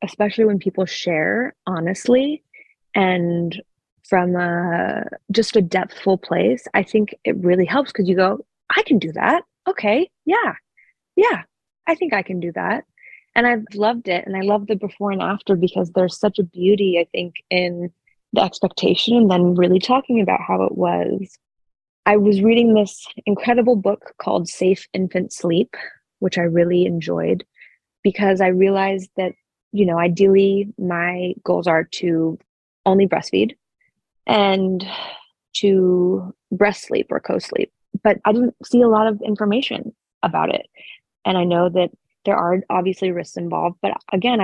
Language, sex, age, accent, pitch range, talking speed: English, female, 20-39, American, 180-220 Hz, 155 wpm